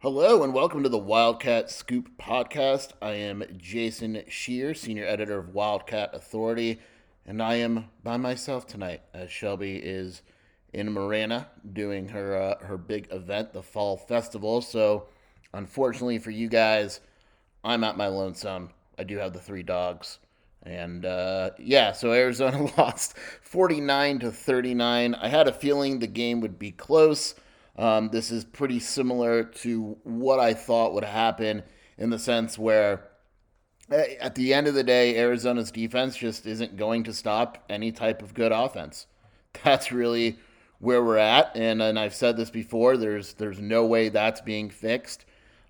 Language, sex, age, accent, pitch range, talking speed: English, male, 30-49, American, 105-120 Hz, 160 wpm